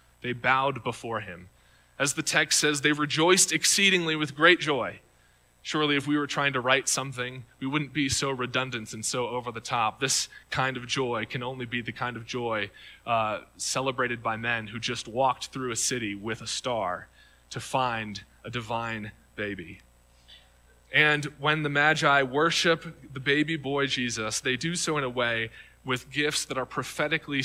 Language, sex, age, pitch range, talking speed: English, male, 20-39, 115-145 Hz, 175 wpm